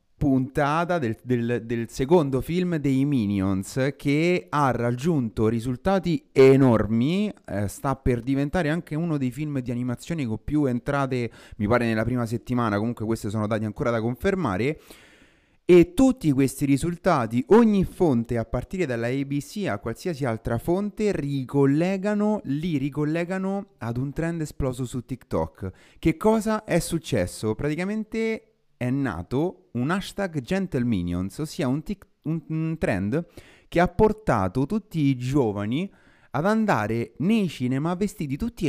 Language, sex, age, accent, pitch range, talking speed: Italian, male, 30-49, native, 115-170 Hz, 135 wpm